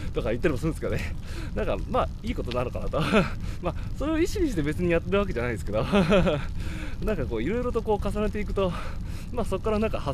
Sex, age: male, 20-39